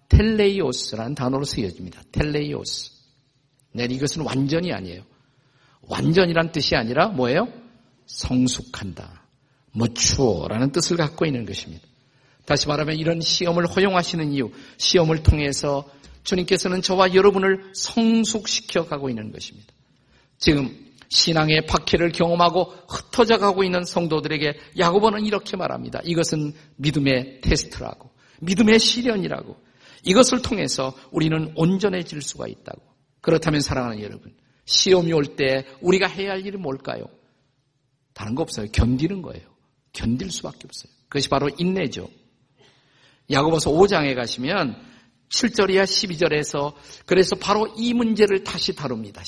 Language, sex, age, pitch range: Korean, male, 50-69, 130-180 Hz